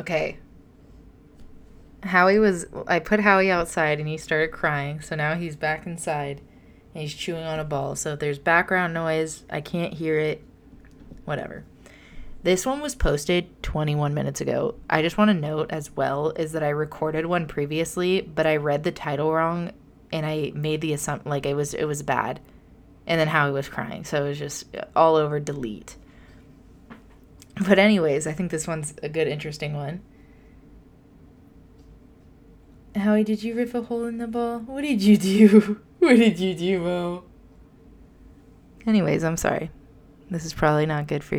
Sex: female